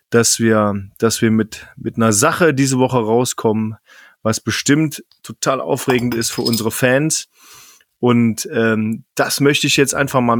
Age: 30-49